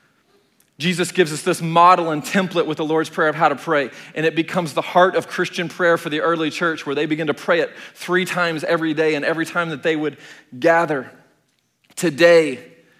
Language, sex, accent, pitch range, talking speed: English, male, American, 115-160 Hz, 210 wpm